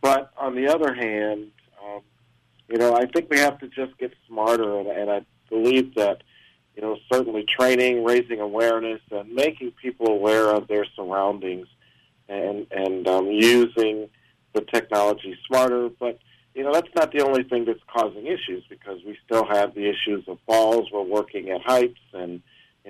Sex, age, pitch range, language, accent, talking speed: male, 50-69, 100-125 Hz, English, American, 175 wpm